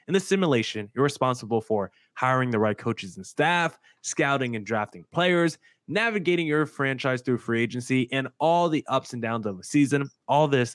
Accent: American